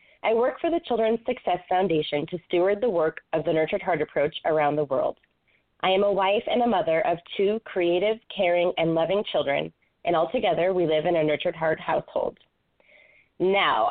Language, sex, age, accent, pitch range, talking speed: English, female, 20-39, American, 165-210 Hz, 190 wpm